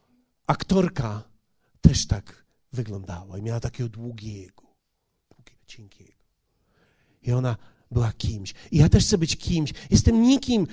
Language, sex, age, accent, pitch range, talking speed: Polish, male, 40-59, native, 130-190 Hz, 125 wpm